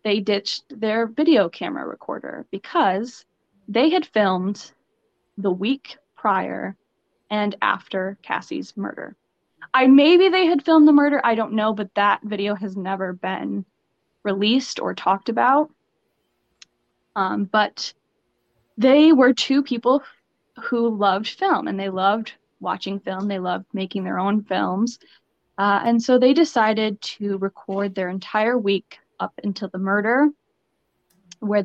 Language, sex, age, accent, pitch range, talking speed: English, female, 10-29, American, 195-245 Hz, 135 wpm